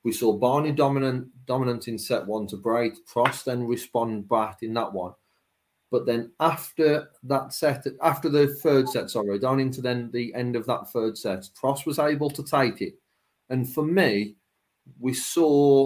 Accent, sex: British, male